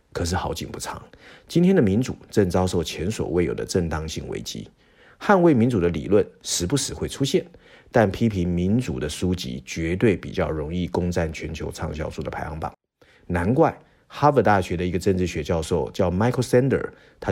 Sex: male